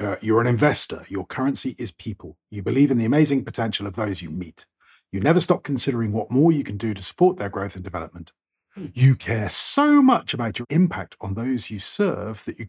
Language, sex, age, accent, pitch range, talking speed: English, male, 40-59, British, 95-125 Hz, 220 wpm